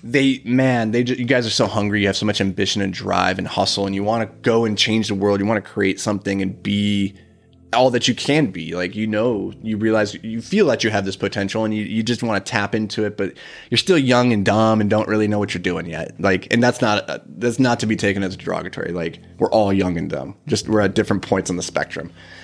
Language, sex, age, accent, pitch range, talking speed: English, male, 30-49, American, 100-125 Hz, 260 wpm